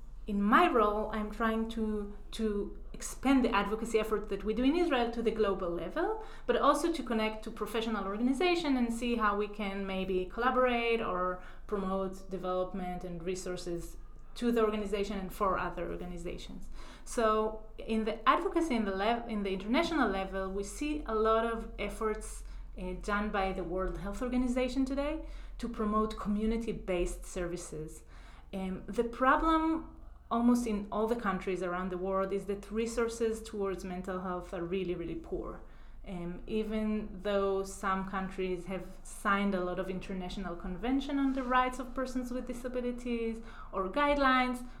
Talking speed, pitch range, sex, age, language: 155 wpm, 190-240 Hz, female, 30-49, English